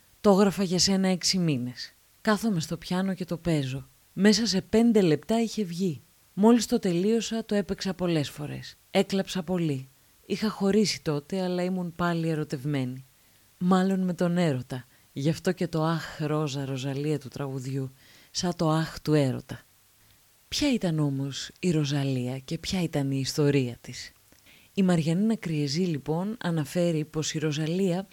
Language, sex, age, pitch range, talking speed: Greek, female, 20-39, 140-190 Hz, 150 wpm